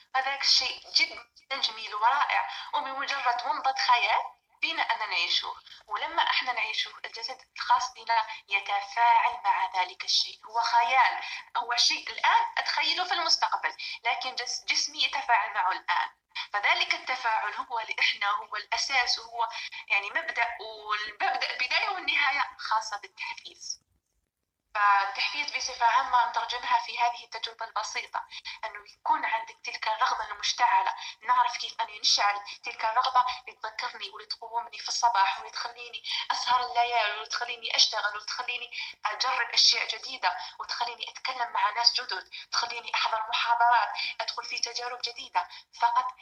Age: 20-39